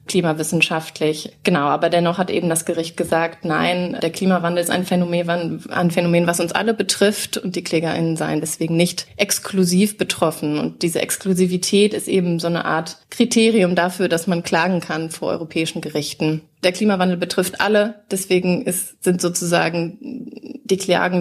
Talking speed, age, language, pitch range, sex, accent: 155 wpm, 30-49, German, 165-190 Hz, female, German